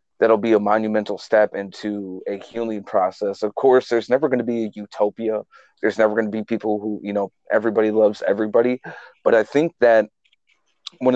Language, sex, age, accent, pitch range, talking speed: English, male, 30-49, American, 105-120 Hz, 190 wpm